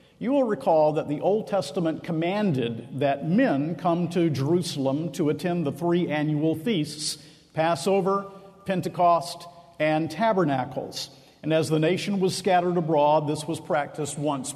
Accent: American